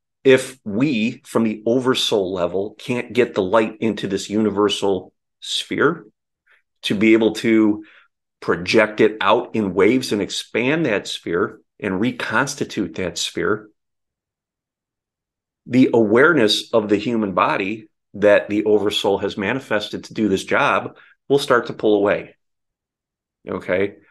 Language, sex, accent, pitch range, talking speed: English, male, American, 100-115 Hz, 130 wpm